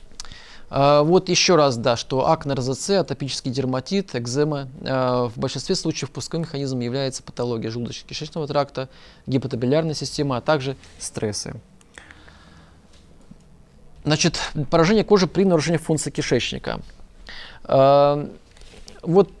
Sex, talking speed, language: male, 100 wpm, Russian